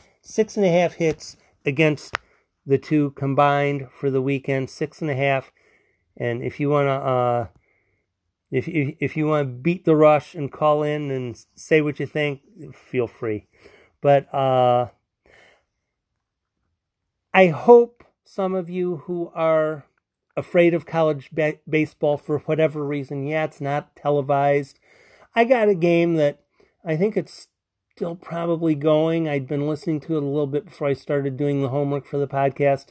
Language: English